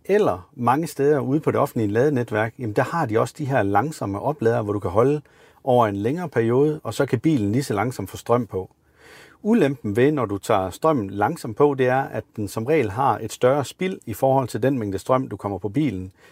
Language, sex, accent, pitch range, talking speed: Danish, male, native, 105-140 Hz, 230 wpm